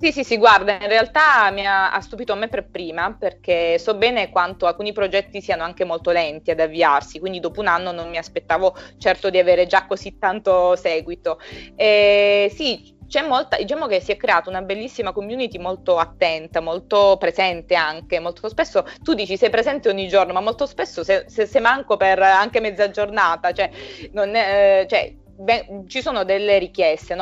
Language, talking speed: Italian, 185 wpm